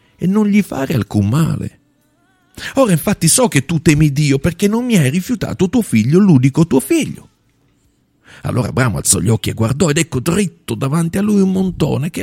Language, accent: Italian, native